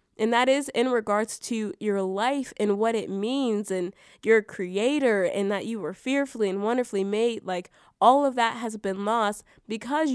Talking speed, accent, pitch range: 185 wpm, American, 195-230 Hz